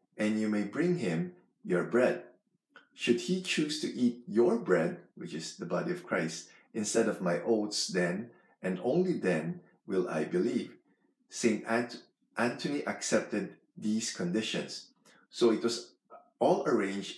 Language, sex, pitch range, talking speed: English, male, 90-115 Hz, 145 wpm